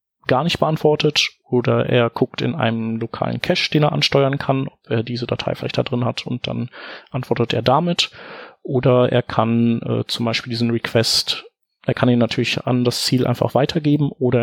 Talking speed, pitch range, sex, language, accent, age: 185 wpm, 115-135 Hz, male, German, German, 30-49